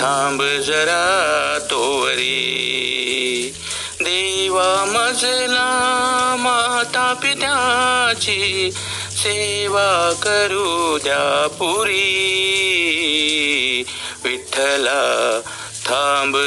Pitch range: 170-250 Hz